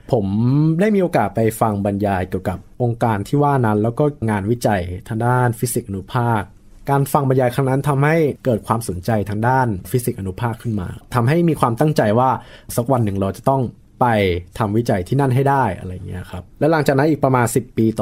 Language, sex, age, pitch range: Thai, male, 20-39, 105-140 Hz